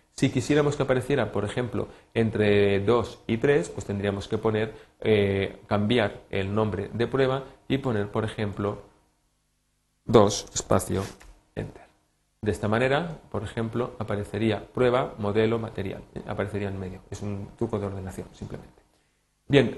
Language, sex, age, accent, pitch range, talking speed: Spanish, male, 30-49, Spanish, 100-115 Hz, 140 wpm